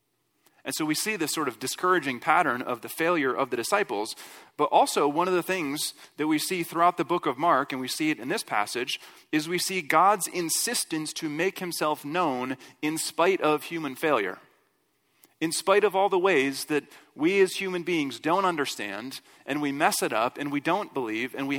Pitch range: 140-180 Hz